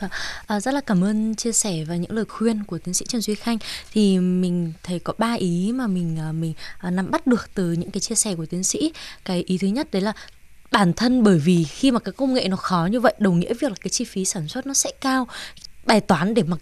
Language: Vietnamese